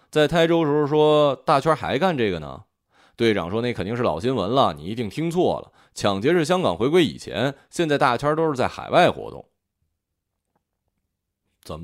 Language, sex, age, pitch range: Chinese, male, 20-39, 90-150 Hz